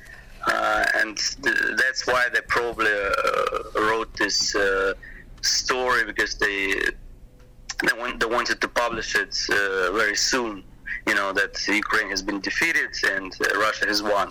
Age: 30-49